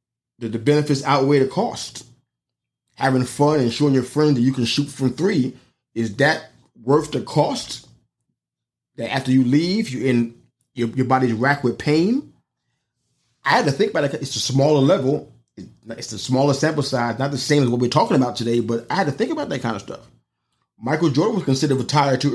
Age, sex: 30-49, male